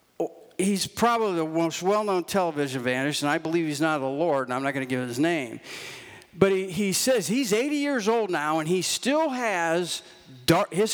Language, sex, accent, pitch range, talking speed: English, male, American, 165-245 Hz, 205 wpm